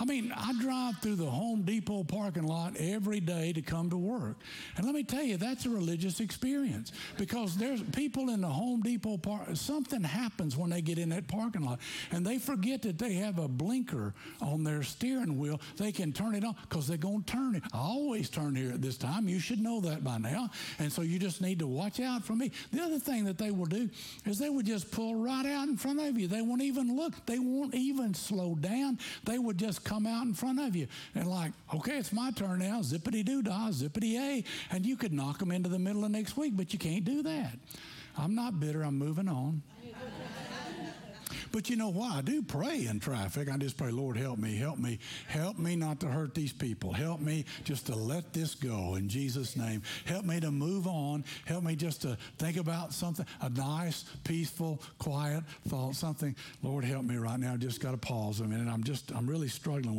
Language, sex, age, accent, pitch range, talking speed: English, male, 60-79, American, 145-220 Hz, 225 wpm